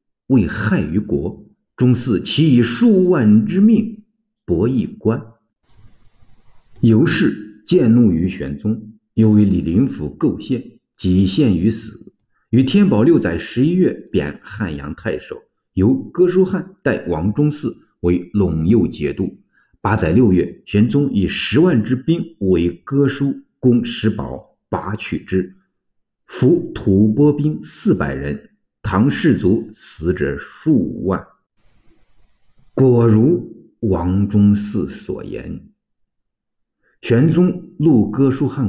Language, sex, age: Chinese, male, 50-69